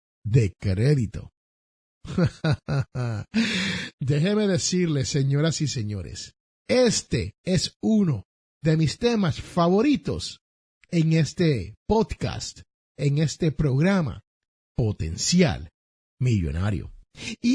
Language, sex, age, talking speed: Spanish, male, 50-69, 80 wpm